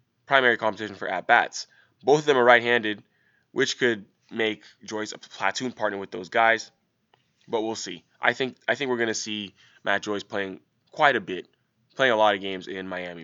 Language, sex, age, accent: English, male, 20-39, American